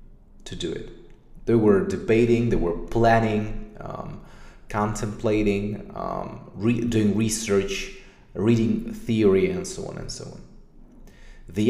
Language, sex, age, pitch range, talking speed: English, male, 30-49, 95-125 Hz, 120 wpm